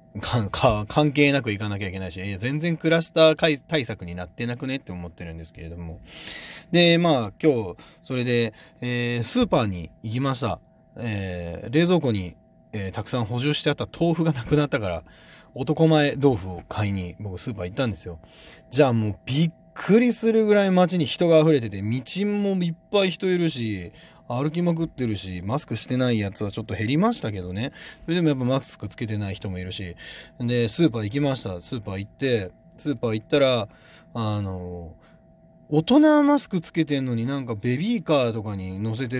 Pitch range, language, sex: 100-160 Hz, Japanese, male